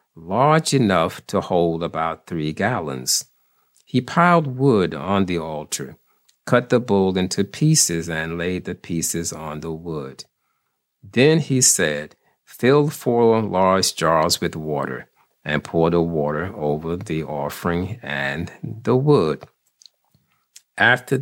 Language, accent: English, American